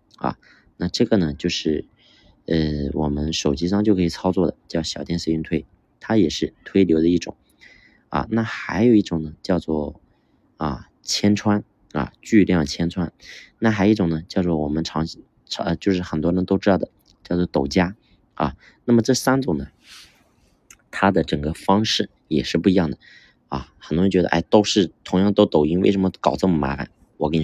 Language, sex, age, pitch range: Chinese, male, 30-49, 80-105 Hz